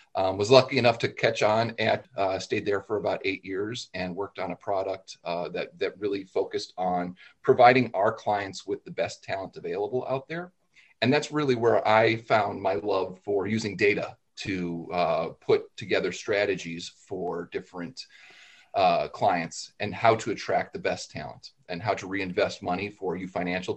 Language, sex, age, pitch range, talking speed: English, male, 30-49, 95-120 Hz, 180 wpm